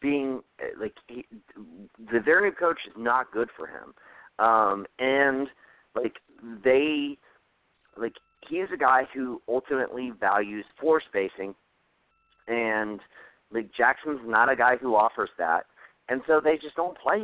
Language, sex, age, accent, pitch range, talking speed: English, male, 40-59, American, 125-170 Hz, 145 wpm